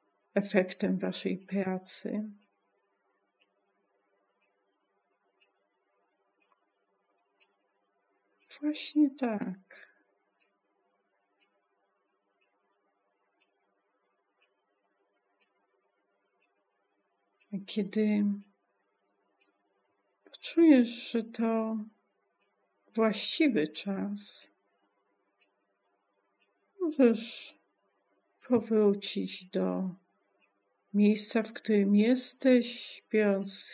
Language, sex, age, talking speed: Polish, female, 60-79, 35 wpm